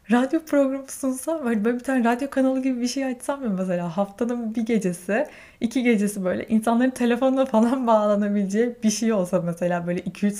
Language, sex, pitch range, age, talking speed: Turkish, female, 200-265 Hz, 20-39, 165 wpm